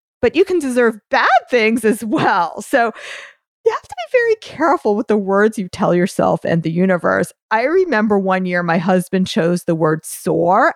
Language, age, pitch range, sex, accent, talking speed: English, 40-59, 175-230 Hz, female, American, 190 wpm